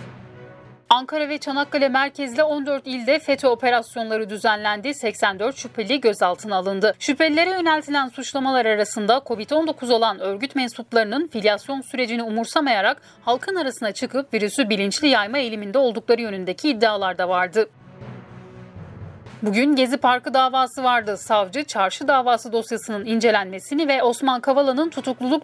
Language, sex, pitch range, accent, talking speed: Turkish, female, 205-275 Hz, native, 115 wpm